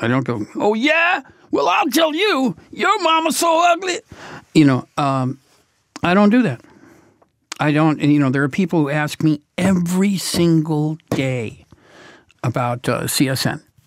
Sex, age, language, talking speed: male, 60-79, English, 160 wpm